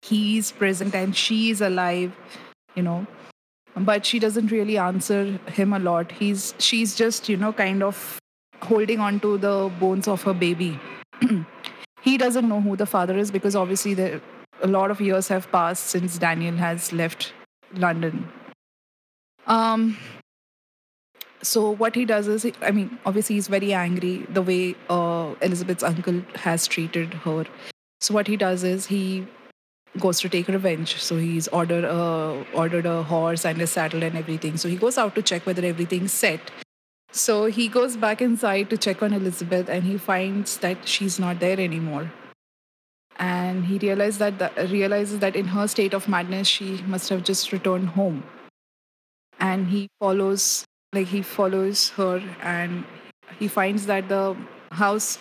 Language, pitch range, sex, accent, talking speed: English, 180-205 Hz, female, Indian, 165 wpm